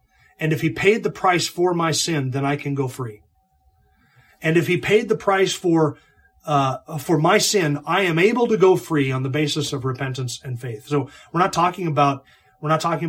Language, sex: English, male